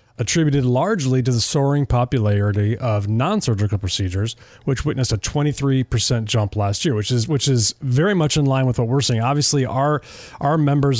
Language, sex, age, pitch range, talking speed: English, male, 30-49, 115-145 Hz, 175 wpm